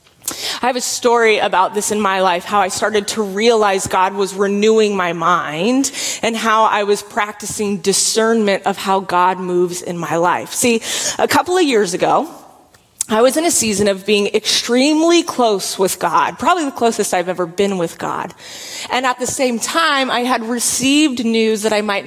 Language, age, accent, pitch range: English, 30-49, American, 200-265 Hz